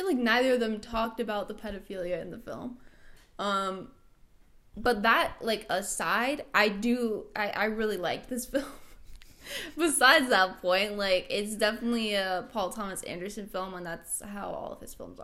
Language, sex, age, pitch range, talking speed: English, female, 10-29, 195-235 Hz, 165 wpm